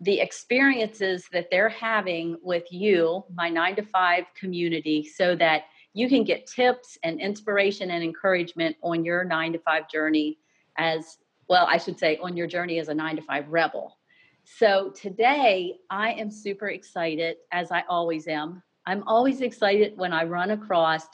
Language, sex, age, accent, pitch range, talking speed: English, female, 40-59, American, 165-215 Hz, 165 wpm